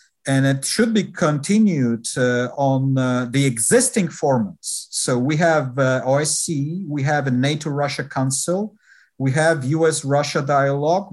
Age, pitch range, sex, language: 50-69, 135-175 Hz, male, English